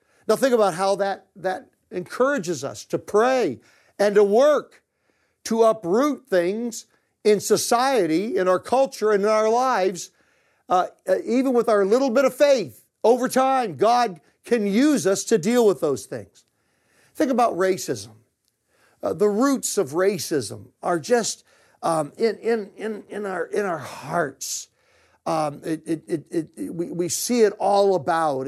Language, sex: English, male